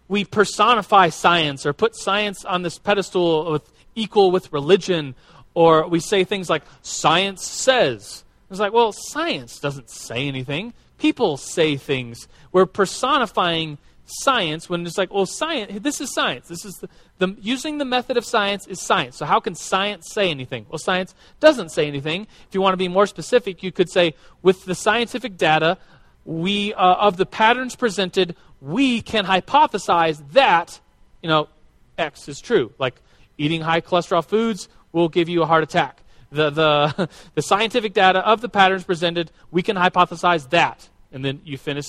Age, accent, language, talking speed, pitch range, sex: 30-49, American, English, 170 wpm, 155-205 Hz, male